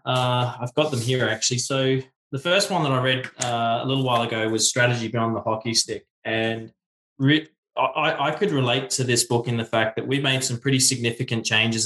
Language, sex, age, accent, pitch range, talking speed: English, male, 20-39, Australian, 110-130 Hz, 205 wpm